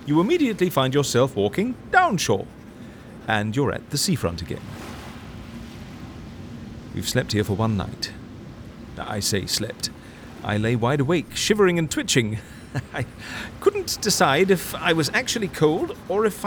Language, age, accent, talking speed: English, 40-59, British, 140 wpm